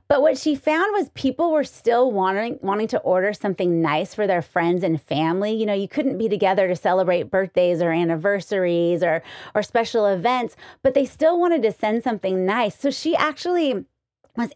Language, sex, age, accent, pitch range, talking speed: English, female, 30-49, American, 185-250 Hz, 190 wpm